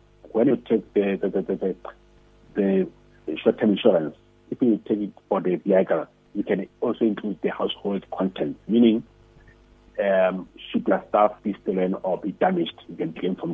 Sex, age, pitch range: male, 60-79, 90-110 Hz